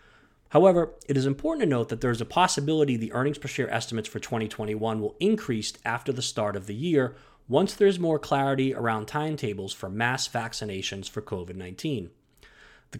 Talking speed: 180 wpm